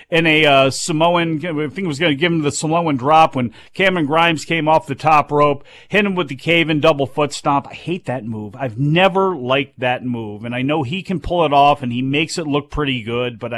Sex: male